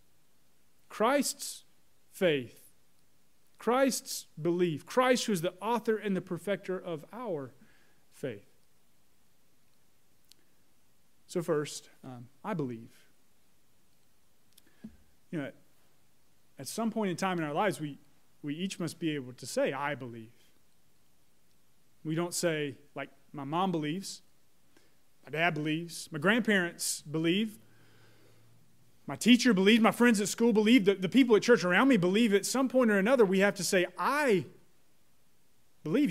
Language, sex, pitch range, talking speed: English, male, 150-205 Hz, 135 wpm